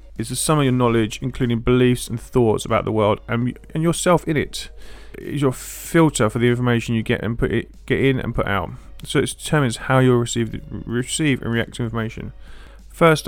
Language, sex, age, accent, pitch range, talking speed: English, male, 30-49, British, 110-130 Hz, 210 wpm